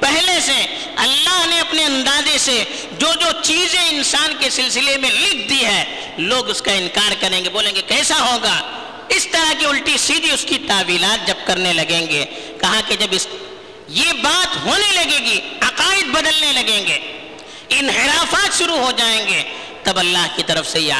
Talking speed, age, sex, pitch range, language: 145 wpm, 50-69, female, 225-335 Hz, Urdu